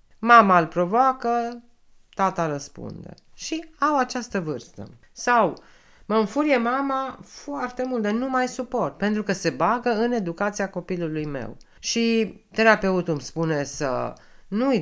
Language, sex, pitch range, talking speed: Romanian, female, 130-215 Hz, 135 wpm